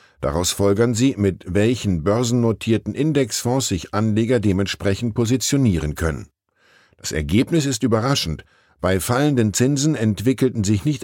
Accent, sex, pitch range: German, male, 100-125 Hz